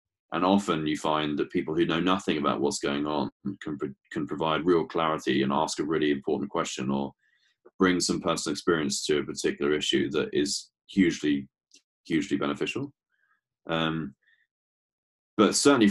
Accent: British